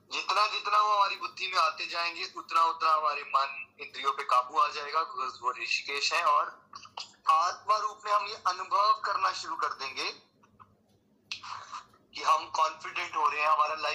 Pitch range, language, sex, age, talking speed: 145-185 Hz, Hindi, male, 20-39, 90 wpm